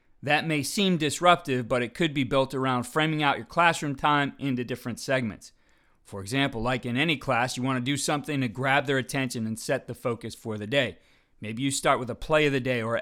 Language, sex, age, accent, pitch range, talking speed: English, male, 40-59, American, 120-150 Hz, 230 wpm